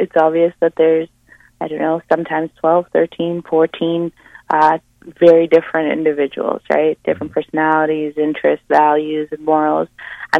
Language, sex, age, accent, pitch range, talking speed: English, female, 20-39, American, 145-165 Hz, 135 wpm